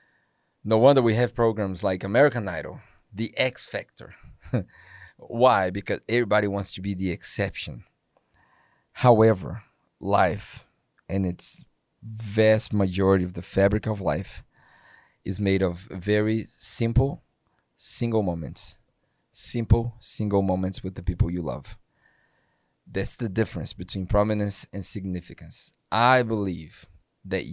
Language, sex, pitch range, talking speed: English, male, 95-115 Hz, 120 wpm